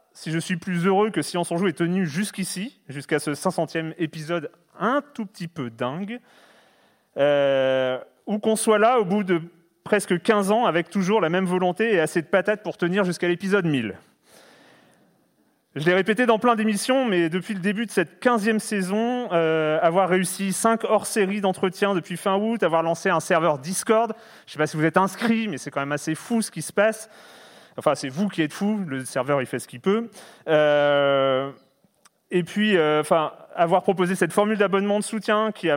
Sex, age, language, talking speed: male, 30-49, French, 205 wpm